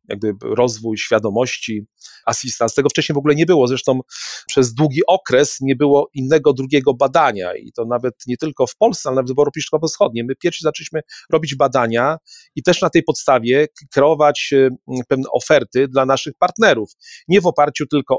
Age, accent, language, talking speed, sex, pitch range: 40-59, native, Polish, 170 wpm, male, 125-155 Hz